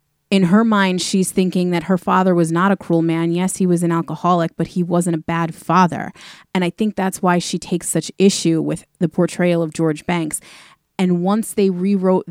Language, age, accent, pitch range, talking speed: English, 30-49, American, 170-195 Hz, 210 wpm